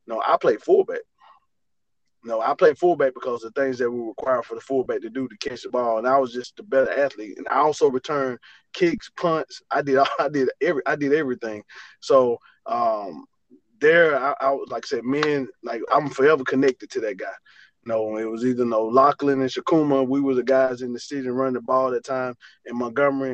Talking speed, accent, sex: 220 wpm, American, male